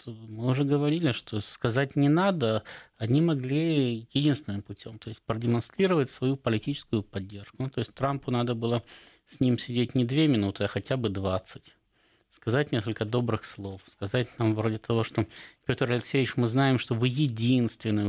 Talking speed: 165 wpm